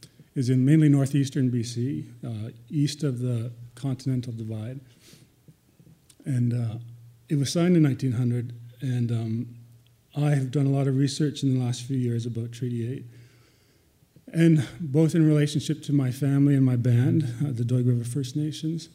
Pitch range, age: 120-140 Hz, 40-59